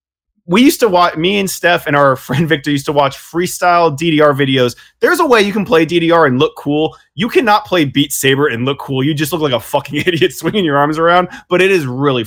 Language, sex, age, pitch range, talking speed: English, male, 20-39, 120-160 Hz, 245 wpm